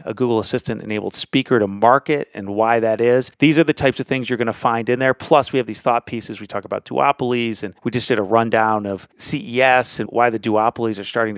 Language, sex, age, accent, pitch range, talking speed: English, male, 30-49, American, 110-130 Hz, 245 wpm